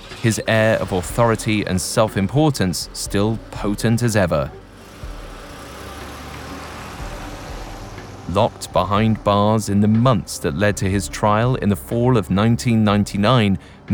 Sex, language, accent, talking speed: male, English, British, 110 wpm